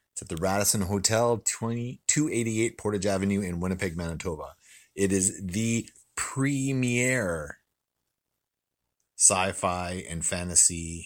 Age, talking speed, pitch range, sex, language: 30-49, 110 wpm, 85-100 Hz, male, English